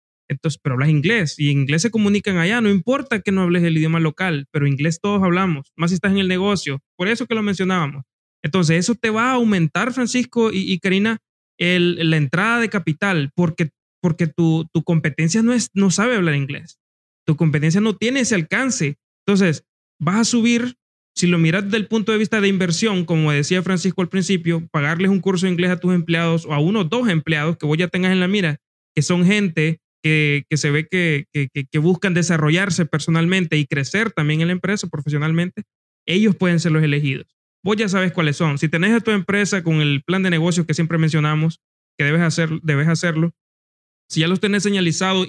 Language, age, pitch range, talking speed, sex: Spanish, 30-49, 155-195 Hz, 210 wpm, male